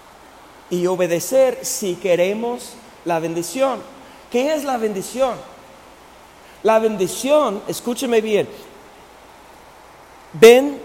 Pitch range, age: 185-240 Hz, 50-69